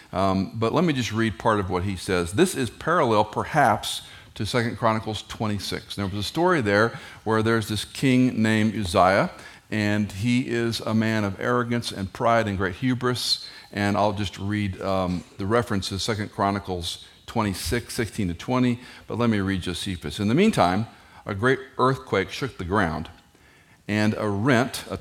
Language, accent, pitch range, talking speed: English, American, 95-125 Hz, 180 wpm